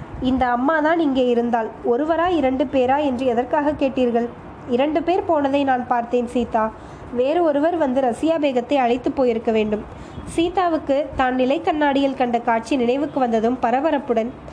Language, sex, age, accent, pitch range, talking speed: Tamil, female, 20-39, native, 240-295 Hz, 135 wpm